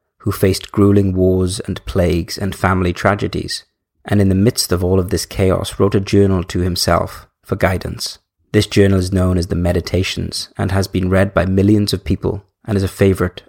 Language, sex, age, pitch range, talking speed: English, male, 30-49, 90-105 Hz, 195 wpm